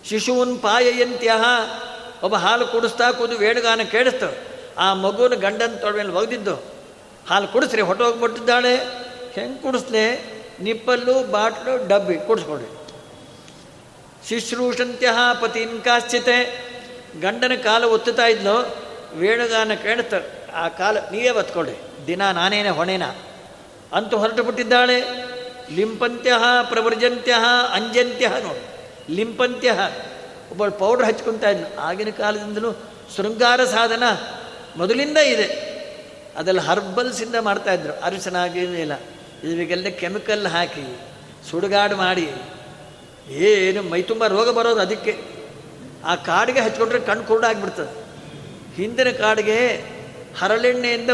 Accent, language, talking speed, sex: native, Kannada, 95 wpm, male